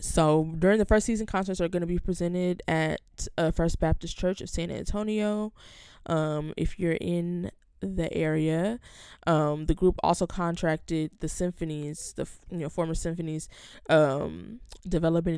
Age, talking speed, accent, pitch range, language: 20-39, 145 wpm, American, 150-175 Hz, English